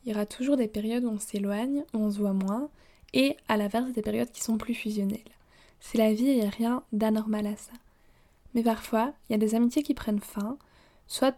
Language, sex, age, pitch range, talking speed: French, female, 20-39, 215-240 Hz, 235 wpm